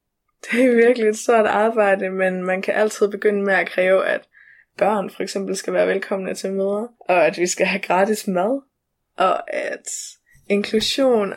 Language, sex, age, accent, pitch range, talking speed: Danish, female, 20-39, native, 195-220 Hz, 175 wpm